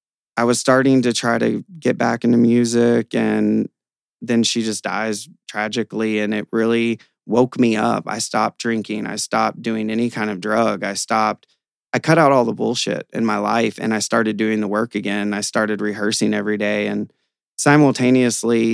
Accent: American